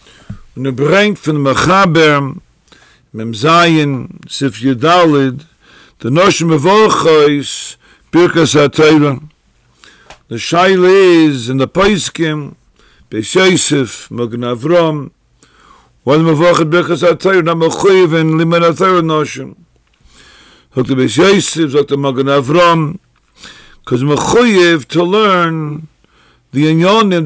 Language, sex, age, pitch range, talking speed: English, male, 50-69, 140-175 Hz, 90 wpm